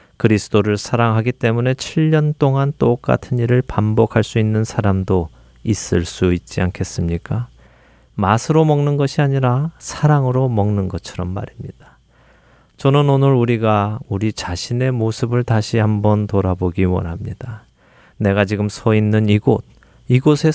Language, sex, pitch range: Korean, male, 95-130 Hz